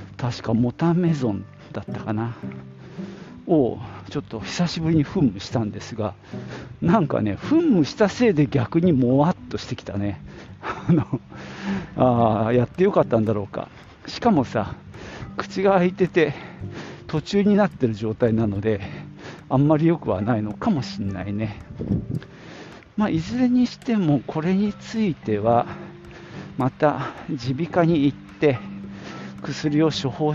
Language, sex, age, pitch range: Japanese, male, 50-69, 115-180 Hz